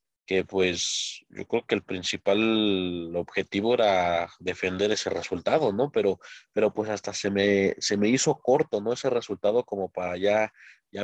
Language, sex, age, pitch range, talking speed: Spanish, male, 30-49, 95-115 Hz, 165 wpm